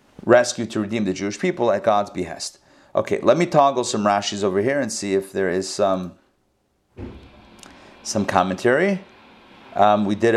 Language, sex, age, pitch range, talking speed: English, male, 40-59, 115-175 Hz, 160 wpm